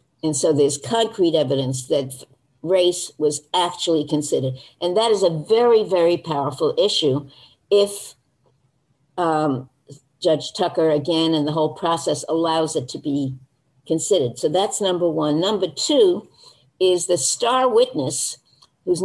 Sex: female